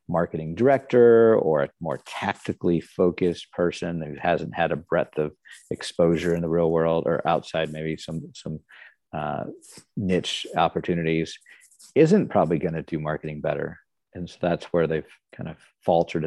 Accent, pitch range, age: American, 80-95 Hz, 50-69